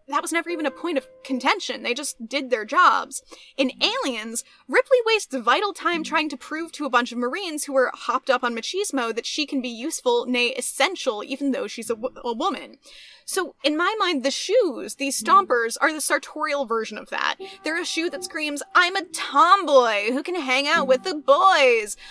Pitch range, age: 245-315 Hz, 10-29